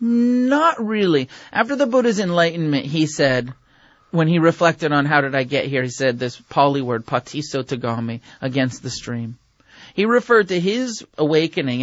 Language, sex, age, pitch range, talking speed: English, male, 30-49, 125-165 Hz, 160 wpm